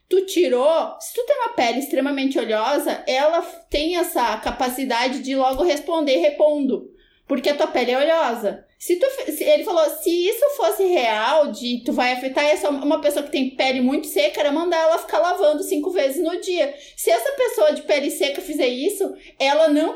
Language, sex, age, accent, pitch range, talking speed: Portuguese, female, 30-49, Brazilian, 270-330 Hz, 185 wpm